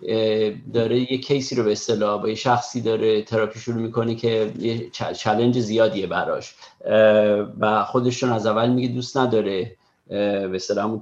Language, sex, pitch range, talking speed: Persian, male, 105-125 Hz, 145 wpm